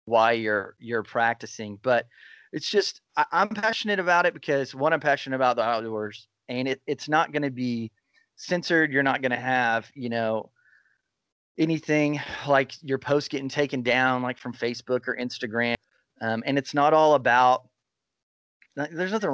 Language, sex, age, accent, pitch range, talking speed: English, male, 30-49, American, 115-135 Hz, 170 wpm